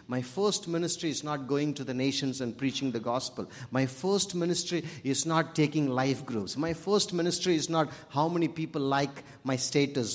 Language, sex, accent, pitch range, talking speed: English, male, Indian, 125-170 Hz, 190 wpm